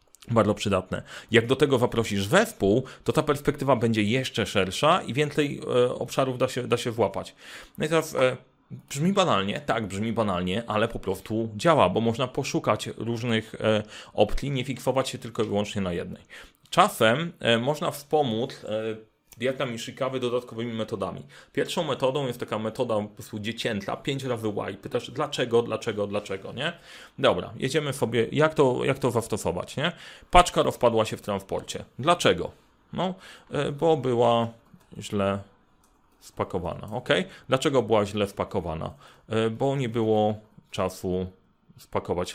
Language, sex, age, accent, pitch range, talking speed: Polish, male, 30-49, native, 105-135 Hz, 150 wpm